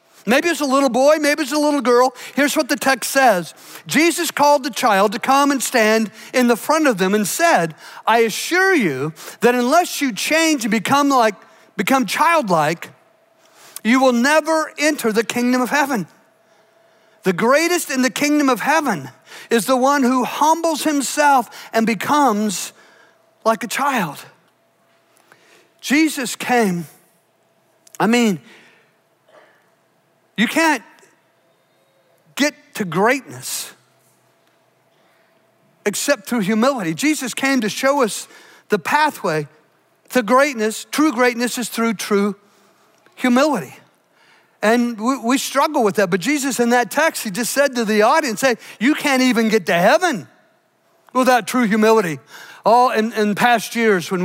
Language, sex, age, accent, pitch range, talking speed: English, male, 50-69, American, 215-280 Hz, 140 wpm